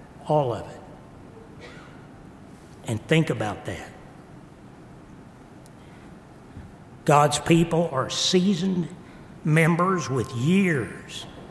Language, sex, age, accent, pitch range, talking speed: English, male, 60-79, American, 130-180 Hz, 75 wpm